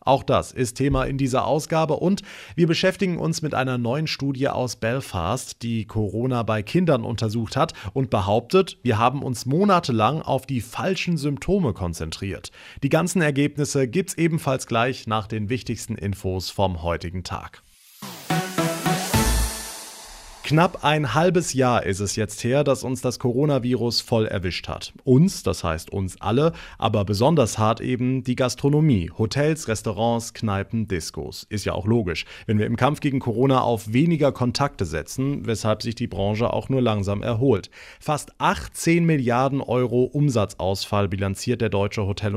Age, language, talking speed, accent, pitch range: 30-49, German, 155 wpm, German, 105-140 Hz